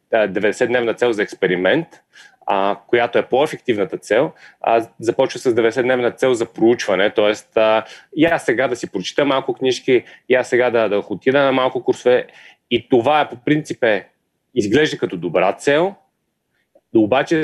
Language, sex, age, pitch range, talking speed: Bulgarian, male, 30-49, 115-150 Hz, 150 wpm